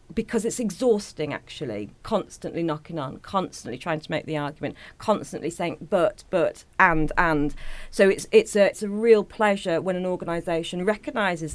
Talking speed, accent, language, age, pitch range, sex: 160 wpm, British, English, 40-59, 160-215 Hz, female